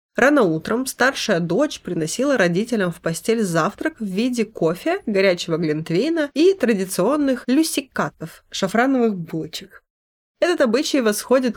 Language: Russian